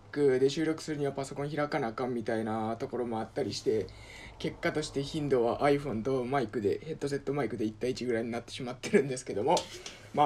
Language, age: Japanese, 20-39